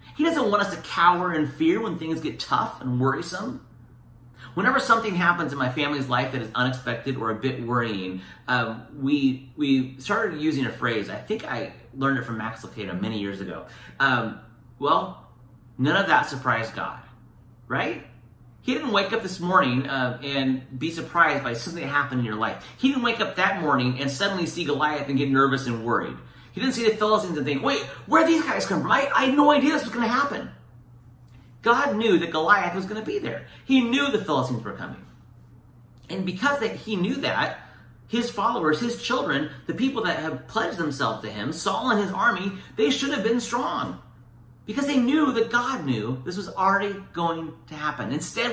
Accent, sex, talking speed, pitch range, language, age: American, male, 200 wpm, 120-200 Hz, English, 30-49